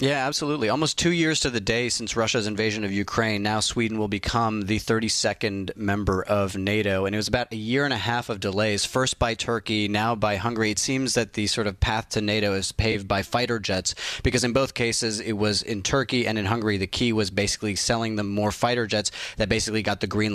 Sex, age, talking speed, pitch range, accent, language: male, 30-49, 230 wpm, 105-130 Hz, American, English